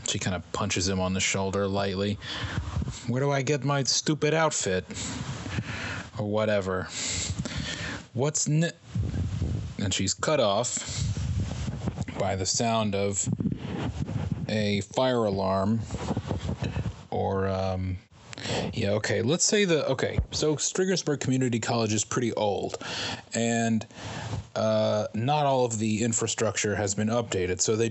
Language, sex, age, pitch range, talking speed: English, male, 30-49, 100-120 Hz, 125 wpm